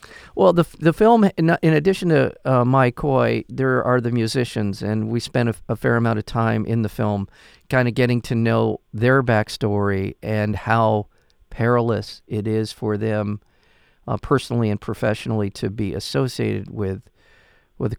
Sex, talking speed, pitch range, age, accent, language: male, 165 wpm, 105-130 Hz, 50-69, American, English